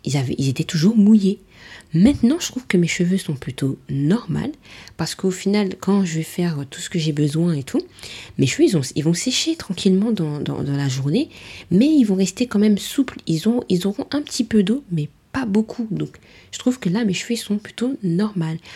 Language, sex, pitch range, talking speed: French, female, 145-210 Hz, 225 wpm